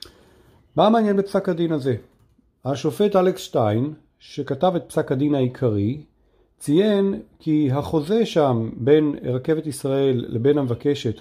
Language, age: Hebrew, 40-59